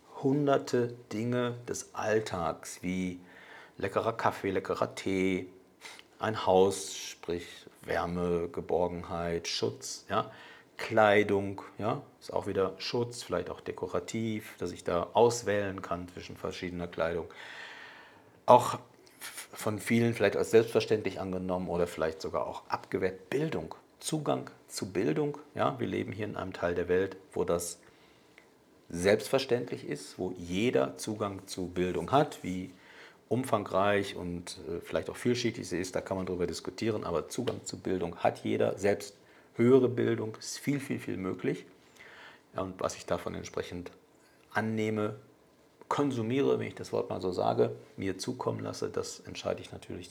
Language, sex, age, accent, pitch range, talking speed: German, male, 50-69, German, 90-115 Hz, 140 wpm